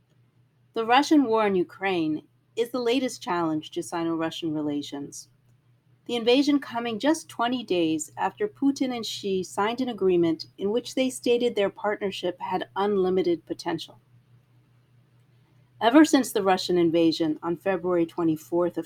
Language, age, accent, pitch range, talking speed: English, 40-59, American, 150-225 Hz, 135 wpm